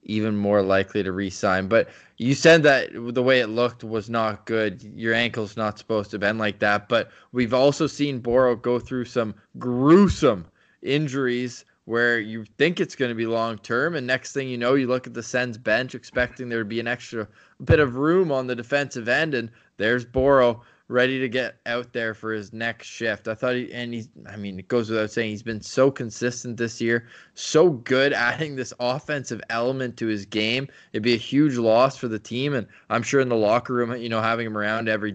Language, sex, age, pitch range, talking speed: English, male, 20-39, 115-130 Hz, 210 wpm